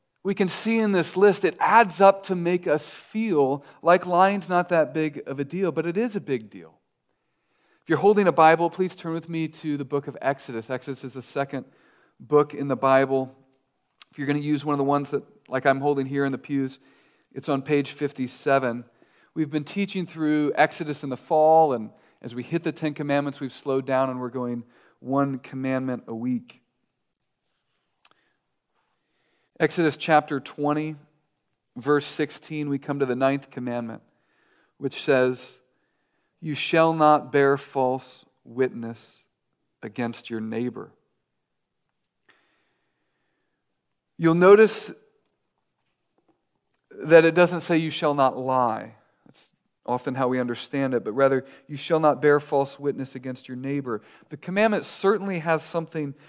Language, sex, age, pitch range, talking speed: English, male, 40-59, 130-160 Hz, 160 wpm